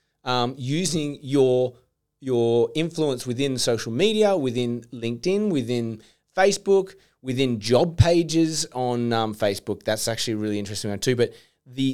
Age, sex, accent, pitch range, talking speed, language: 30-49, male, Australian, 115-140 Hz, 135 wpm, English